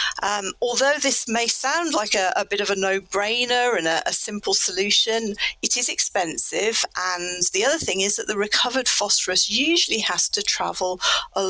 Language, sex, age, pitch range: English, female, 40-59, 190-245 Hz